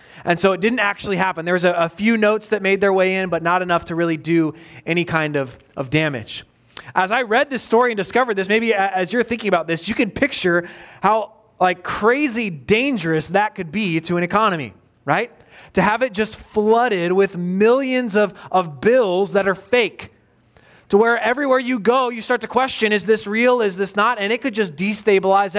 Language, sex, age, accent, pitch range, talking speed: English, male, 20-39, American, 175-225 Hz, 210 wpm